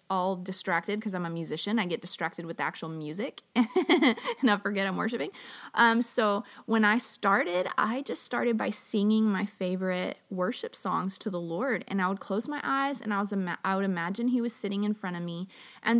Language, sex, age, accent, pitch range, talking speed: English, female, 30-49, American, 190-250 Hz, 205 wpm